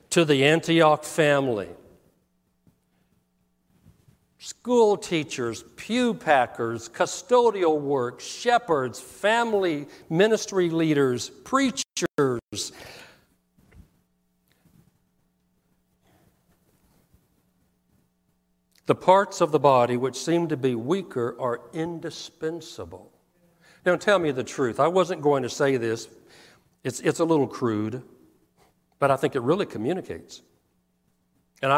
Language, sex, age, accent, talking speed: English, male, 60-79, American, 95 wpm